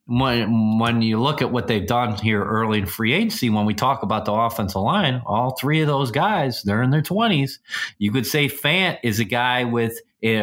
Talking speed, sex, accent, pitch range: 220 wpm, male, American, 105-130 Hz